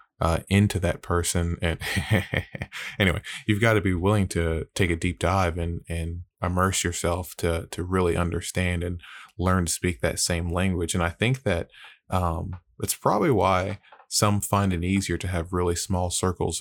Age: 20-39